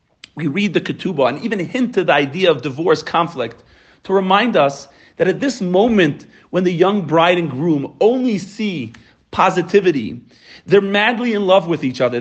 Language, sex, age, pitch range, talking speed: English, male, 40-59, 150-205 Hz, 175 wpm